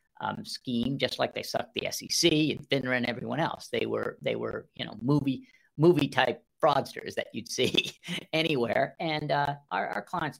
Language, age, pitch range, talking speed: English, 50-69, 130-185 Hz, 185 wpm